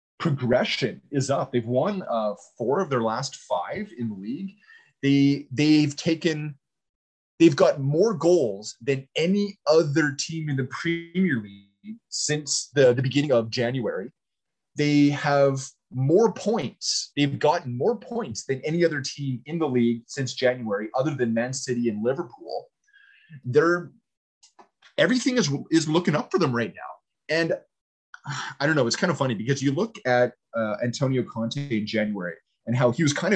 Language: English